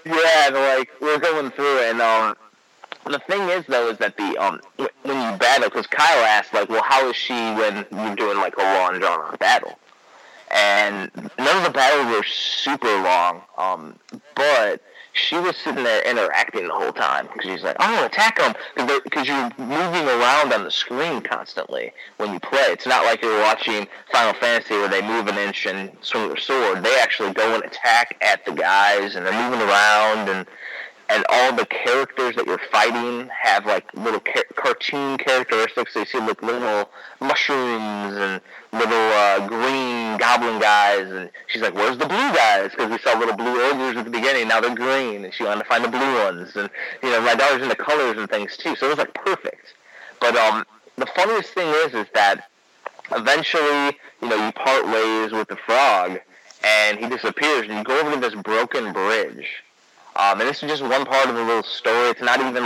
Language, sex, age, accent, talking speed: English, male, 30-49, American, 200 wpm